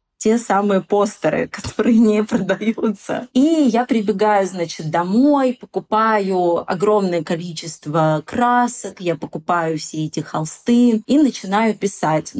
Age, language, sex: 20-39, Russian, female